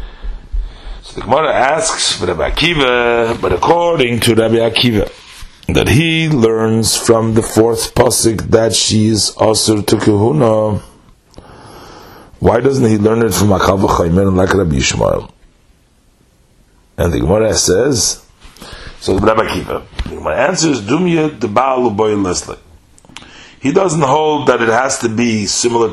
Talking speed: 130 wpm